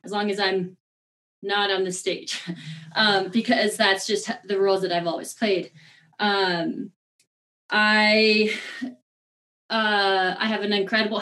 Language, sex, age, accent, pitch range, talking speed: English, female, 20-39, American, 185-220 Hz, 135 wpm